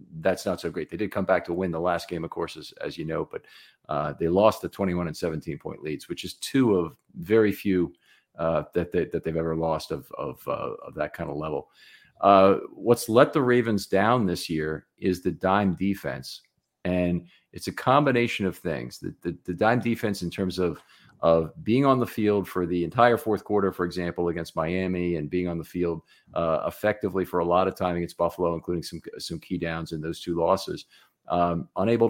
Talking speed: 215 wpm